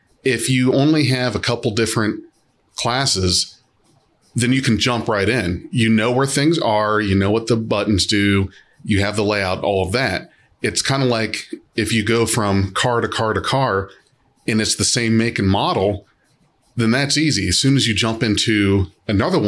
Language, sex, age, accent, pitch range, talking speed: English, male, 30-49, American, 105-125 Hz, 190 wpm